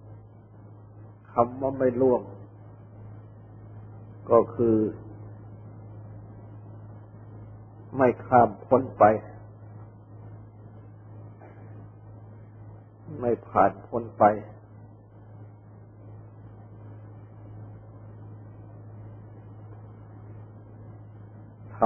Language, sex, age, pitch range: Thai, male, 50-69, 105-110 Hz